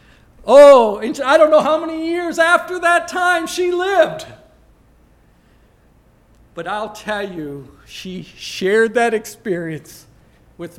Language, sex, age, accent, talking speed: English, male, 50-69, American, 120 wpm